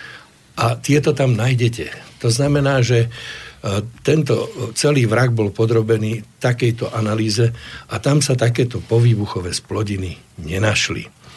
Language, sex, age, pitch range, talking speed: Slovak, male, 60-79, 100-120 Hz, 110 wpm